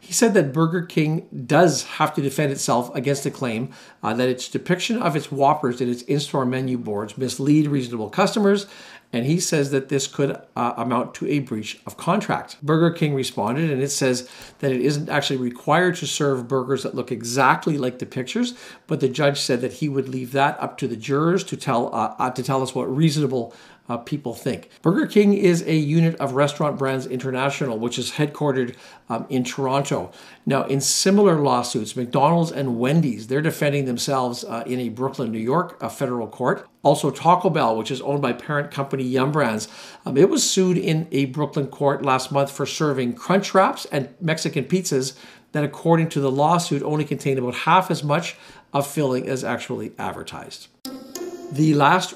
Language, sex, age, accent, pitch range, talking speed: English, male, 50-69, American, 125-155 Hz, 190 wpm